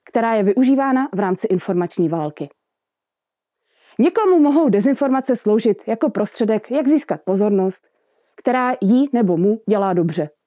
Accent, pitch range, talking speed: native, 195-300 Hz, 125 wpm